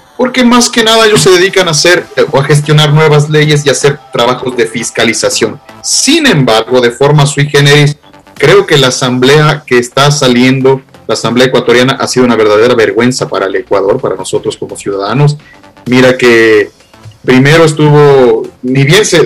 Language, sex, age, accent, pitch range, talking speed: Spanish, male, 40-59, Mexican, 130-170 Hz, 170 wpm